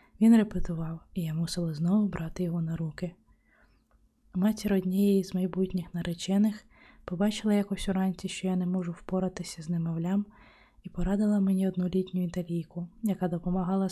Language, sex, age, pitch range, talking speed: Ukrainian, female, 20-39, 175-195 Hz, 140 wpm